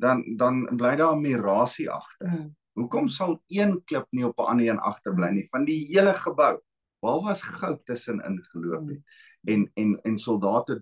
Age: 50-69